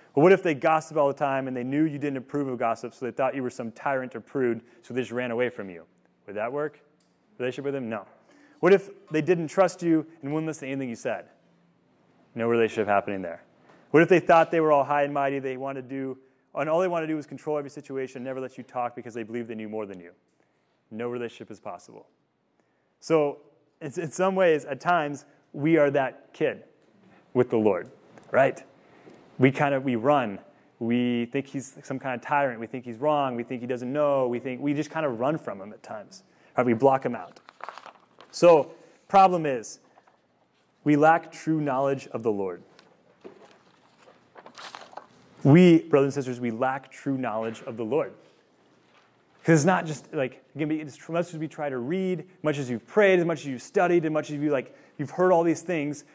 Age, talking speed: 30-49, 215 wpm